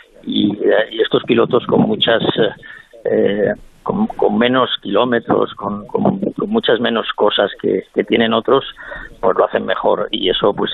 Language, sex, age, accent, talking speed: Spanish, male, 50-69, Spanish, 150 wpm